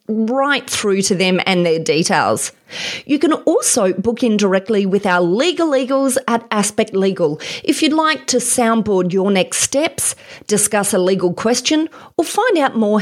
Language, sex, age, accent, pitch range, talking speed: English, female, 30-49, Australian, 180-245 Hz, 165 wpm